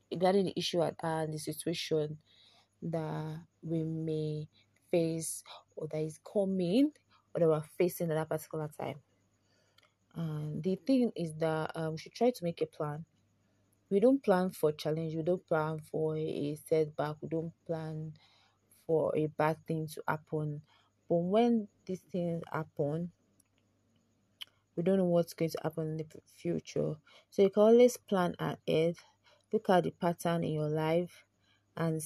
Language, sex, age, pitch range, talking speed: English, female, 20-39, 155-180 Hz, 160 wpm